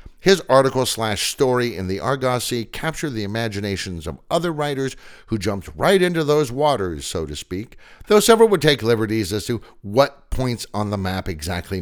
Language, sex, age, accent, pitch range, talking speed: English, male, 60-79, American, 90-140 Hz, 175 wpm